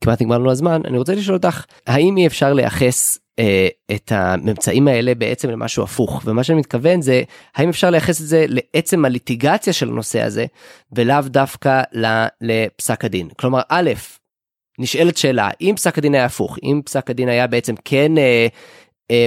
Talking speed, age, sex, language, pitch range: 170 wpm, 20-39, male, Hebrew, 125-150 Hz